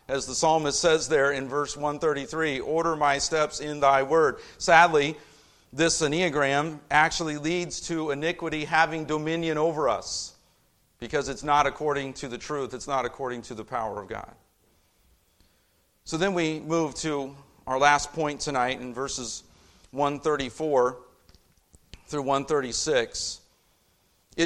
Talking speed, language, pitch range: 130 wpm, English, 135-180 Hz